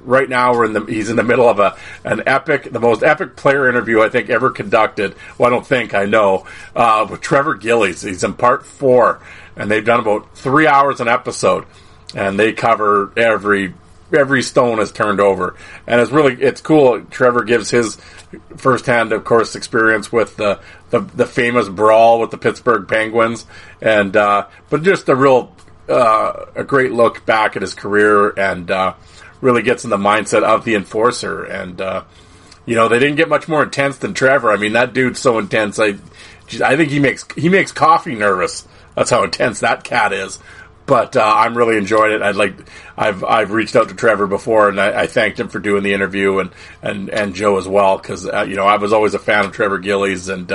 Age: 40-59